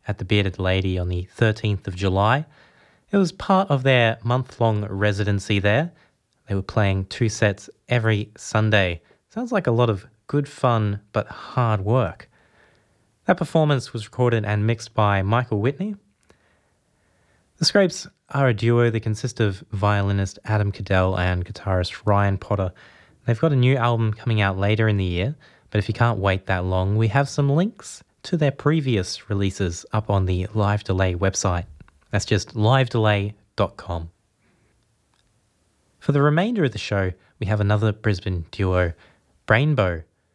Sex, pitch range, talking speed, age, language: male, 100-130 Hz, 155 wpm, 20-39, English